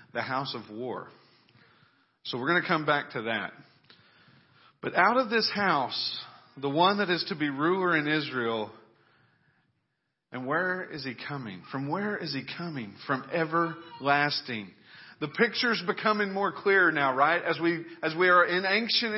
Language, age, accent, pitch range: English, 40-59, American, 140-190 Hz